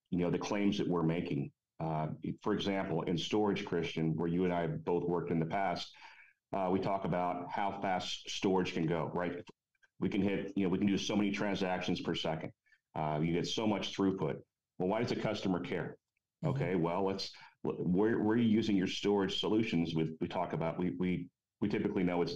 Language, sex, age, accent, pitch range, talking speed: English, male, 40-59, American, 85-100 Hz, 210 wpm